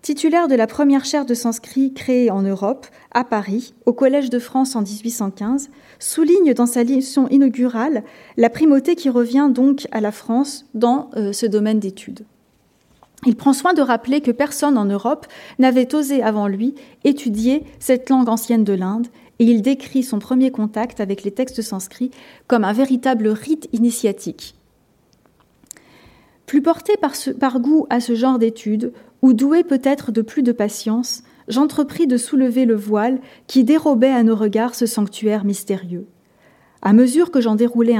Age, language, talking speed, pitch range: 30-49, French, 165 wpm, 220-270 Hz